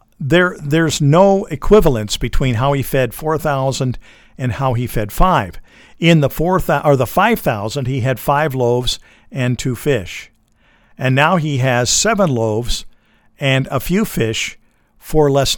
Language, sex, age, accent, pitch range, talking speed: English, male, 50-69, American, 120-155 Hz, 145 wpm